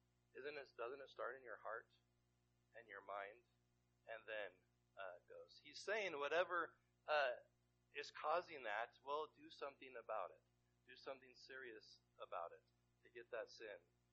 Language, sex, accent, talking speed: English, male, American, 145 wpm